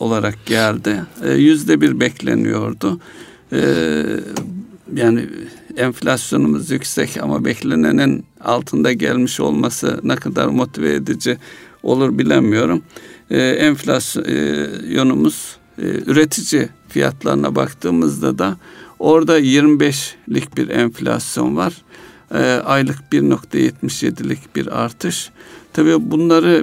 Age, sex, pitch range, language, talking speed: 60-79, male, 90-150 Hz, Turkish, 90 wpm